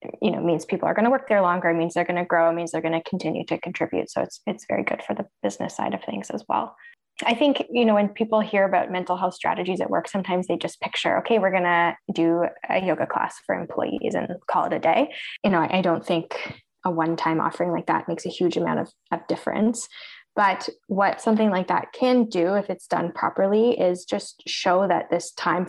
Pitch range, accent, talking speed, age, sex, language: 170-210 Hz, American, 240 wpm, 10-29, female, English